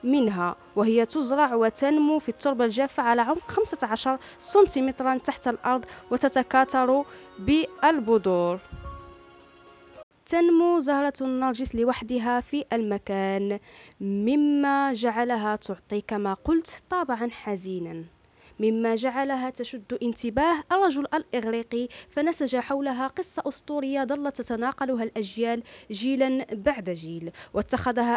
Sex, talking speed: female, 95 wpm